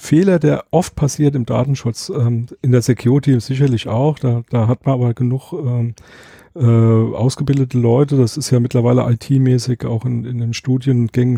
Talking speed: 170 wpm